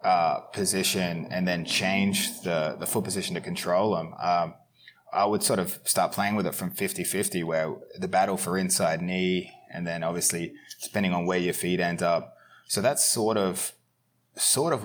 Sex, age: male, 20-39